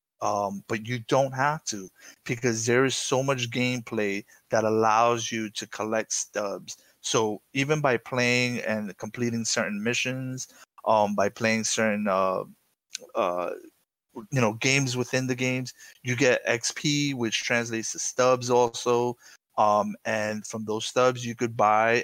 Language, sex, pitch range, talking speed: English, male, 110-125 Hz, 145 wpm